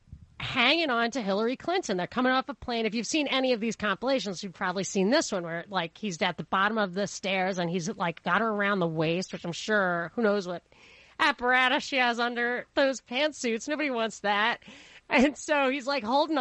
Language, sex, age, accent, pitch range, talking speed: English, female, 30-49, American, 190-265 Hz, 215 wpm